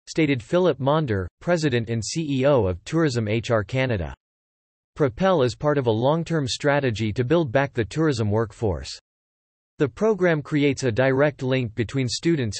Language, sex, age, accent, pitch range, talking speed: English, male, 40-59, American, 115-150 Hz, 150 wpm